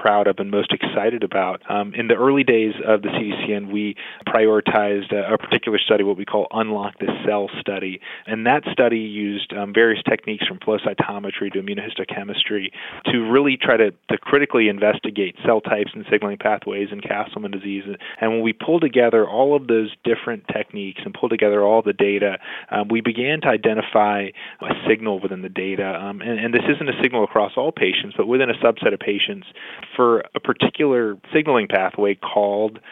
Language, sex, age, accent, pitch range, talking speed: English, male, 30-49, American, 100-110 Hz, 185 wpm